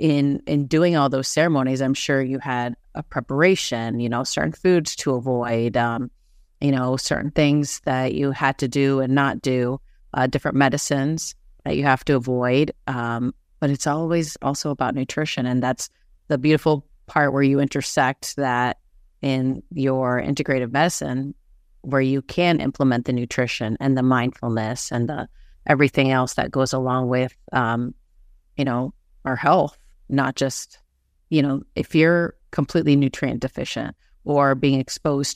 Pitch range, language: 130-145 Hz, English